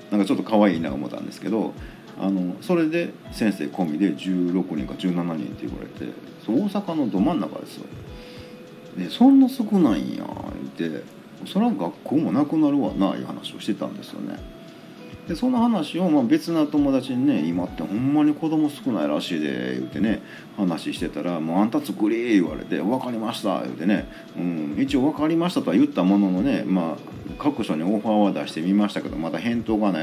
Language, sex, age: Japanese, male, 40-59